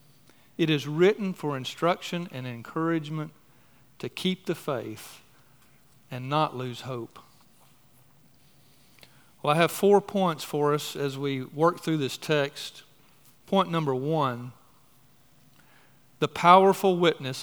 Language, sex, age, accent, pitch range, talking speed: English, male, 40-59, American, 125-155 Hz, 115 wpm